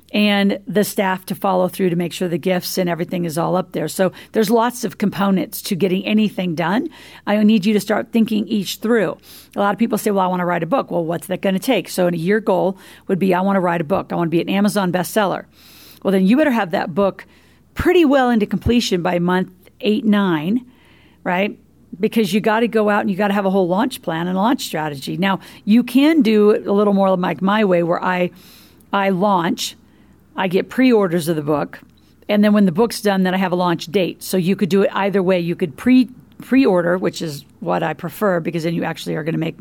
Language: English